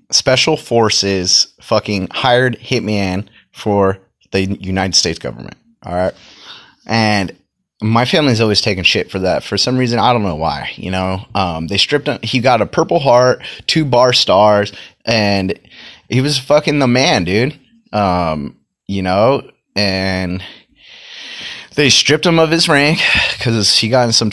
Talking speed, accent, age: 155 wpm, American, 30-49